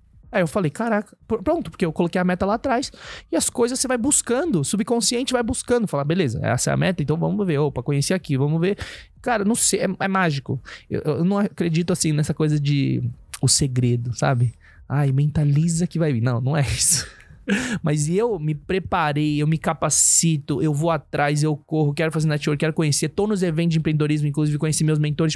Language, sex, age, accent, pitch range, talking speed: Portuguese, male, 20-39, Brazilian, 130-170 Hz, 205 wpm